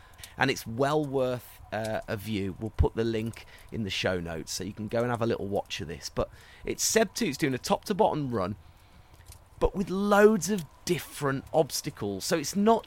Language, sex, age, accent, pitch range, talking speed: English, male, 30-49, British, 100-155 Hz, 205 wpm